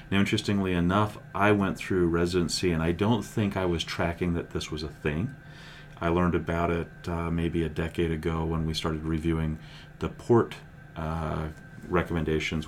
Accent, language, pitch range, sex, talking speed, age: American, English, 85-105 Hz, male, 170 wpm, 40-59